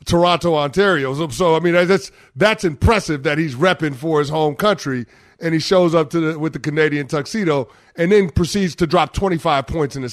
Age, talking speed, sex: 30-49, 215 wpm, male